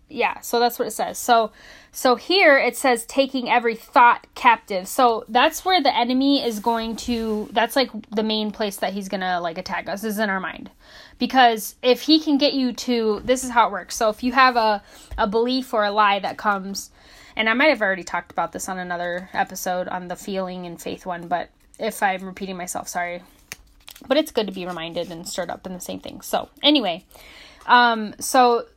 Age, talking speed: 10-29, 215 wpm